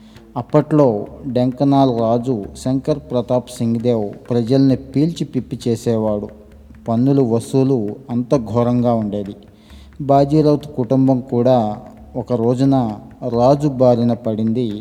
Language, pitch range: Telugu, 110-130 Hz